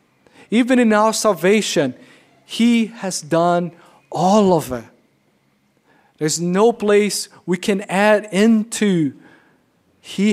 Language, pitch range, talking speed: English, 155-200 Hz, 105 wpm